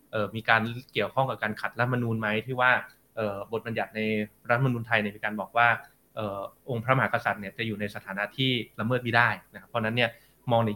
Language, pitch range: Thai, 110-135 Hz